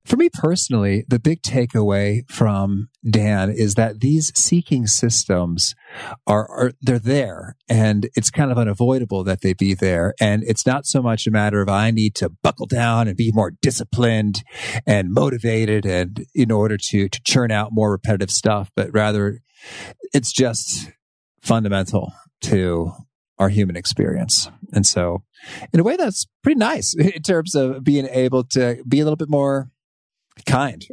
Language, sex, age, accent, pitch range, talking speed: English, male, 40-59, American, 100-130 Hz, 165 wpm